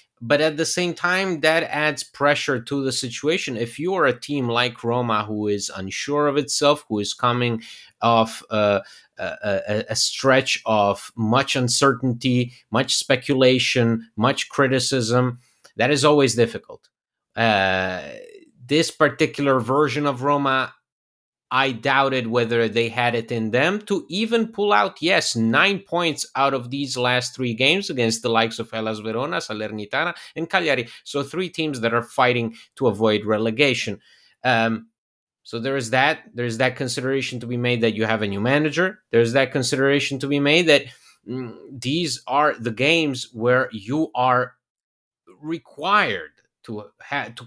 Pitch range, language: 115-145 Hz, English